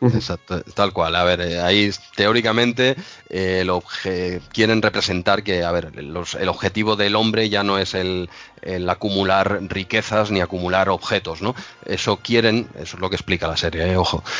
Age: 30-49